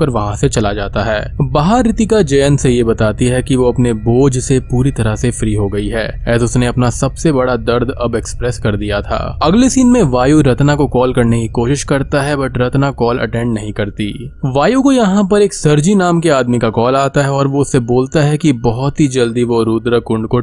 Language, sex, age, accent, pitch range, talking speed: Hindi, male, 20-39, native, 115-150 Hz, 125 wpm